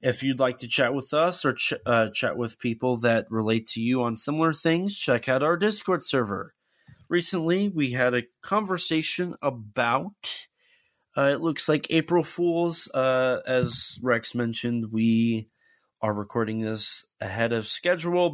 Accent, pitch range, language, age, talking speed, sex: American, 115-165 Hz, English, 30-49, 155 wpm, male